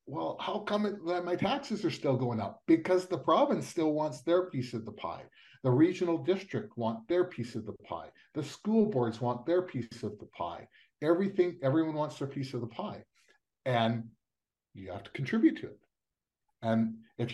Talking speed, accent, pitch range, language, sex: 190 wpm, American, 110-150 Hz, English, male